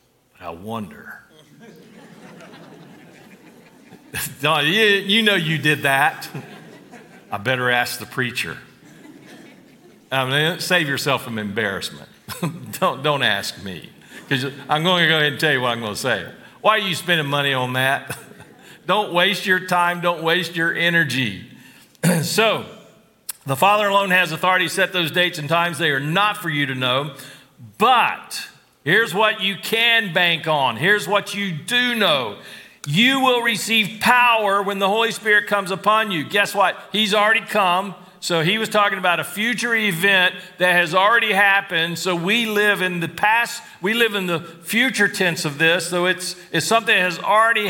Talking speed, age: 165 wpm, 50-69